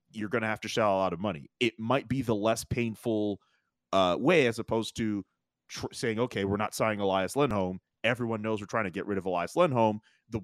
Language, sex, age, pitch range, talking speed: English, male, 30-49, 100-125 Hz, 230 wpm